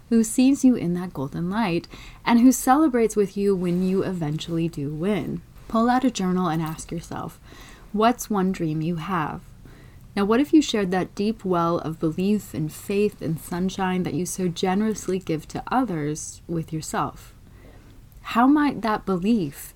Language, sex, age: English, female, 30-49